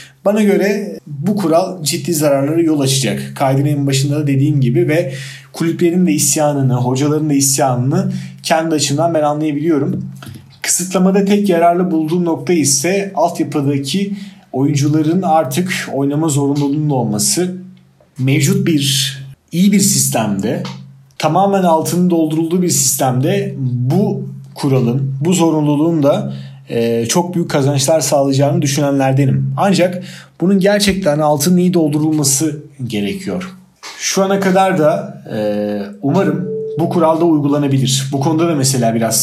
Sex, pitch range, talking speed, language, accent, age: male, 135-170 Hz, 120 wpm, Turkish, native, 40-59